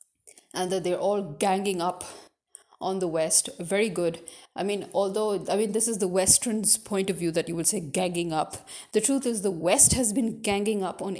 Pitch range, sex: 180-220 Hz, female